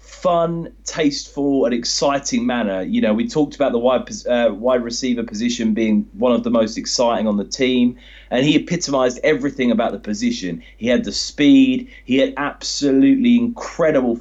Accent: British